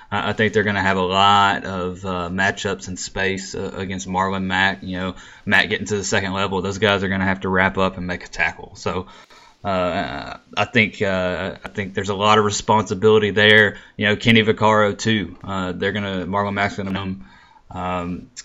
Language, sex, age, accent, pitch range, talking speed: English, male, 20-39, American, 95-110 Hz, 220 wpm